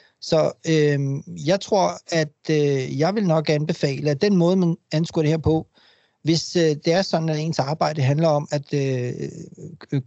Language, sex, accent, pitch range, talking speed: Danish, male, native, 140-160 Hz, 180 wpm